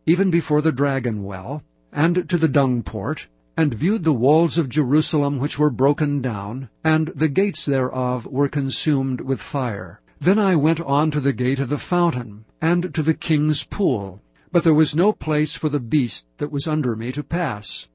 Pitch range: 125-160 Hz